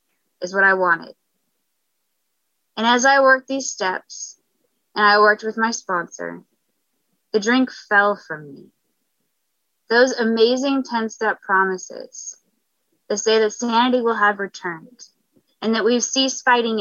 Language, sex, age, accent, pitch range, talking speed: English, female, 20-39, American, 220-275 Hz, 135 wpm